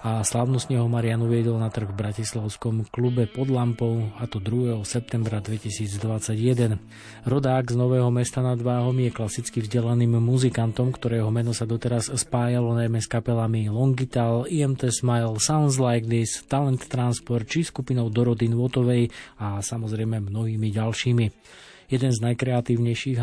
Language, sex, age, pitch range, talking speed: Slovak, male, 20-39, 110-125 Hz, 135 wpm